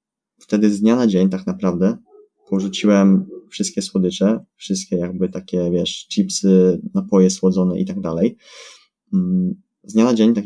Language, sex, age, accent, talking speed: Polish, male, 20-39, native, 145 wpm